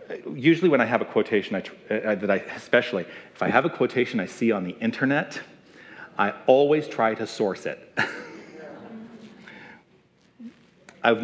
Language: English